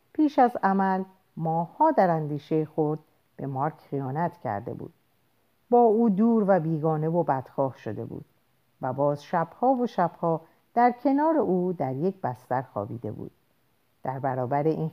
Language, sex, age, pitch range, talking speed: Persian, female, 50-69, 145-205 Hz, 150 wpm